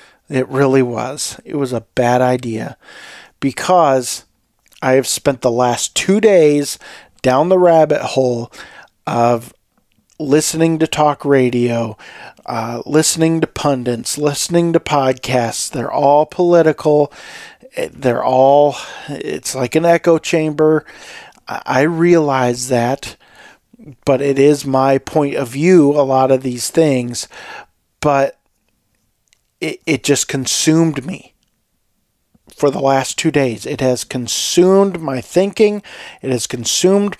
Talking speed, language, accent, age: 125 wpm, English, American, 40-59